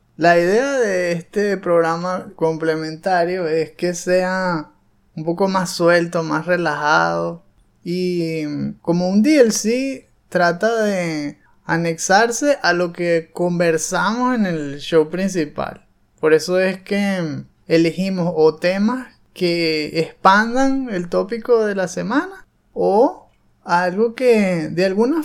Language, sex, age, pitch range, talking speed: Spanish, male, 20-39, 165-200 Hz, 115 wpm